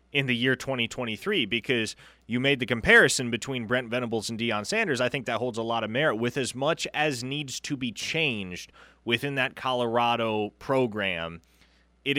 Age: 30-49